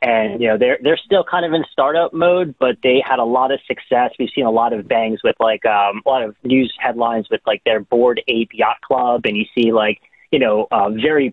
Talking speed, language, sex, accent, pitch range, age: 250 wpm, English, male, American, 130-180 Hz, 30-49